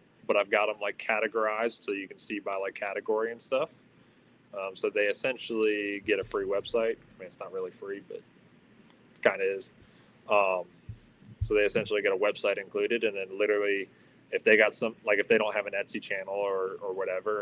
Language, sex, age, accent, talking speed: English, male, 20-39, American, 205 wpm